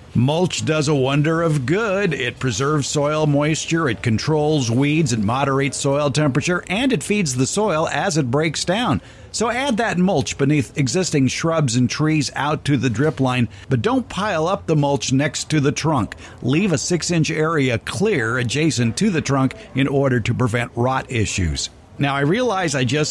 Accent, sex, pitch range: American, male, 125-160 Hz